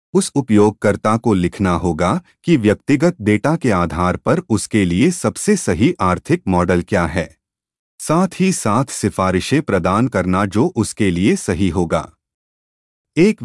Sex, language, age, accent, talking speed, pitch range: male, Hindi, 30-49, native, 140 wpm, 90-140 Hz